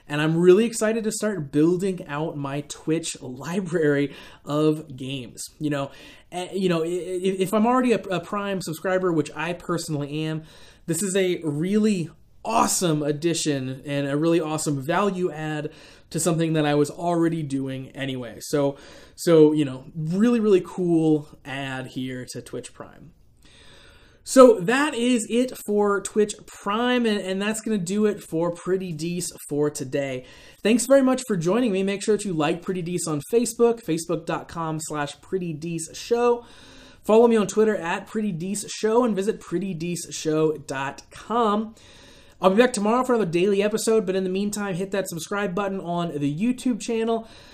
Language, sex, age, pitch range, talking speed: English, male, 20-39, 155-210 Hz, 155 wpm